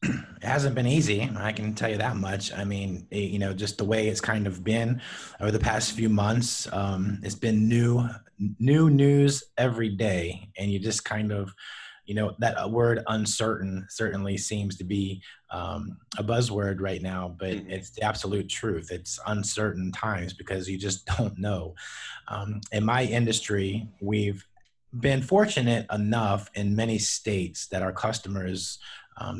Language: English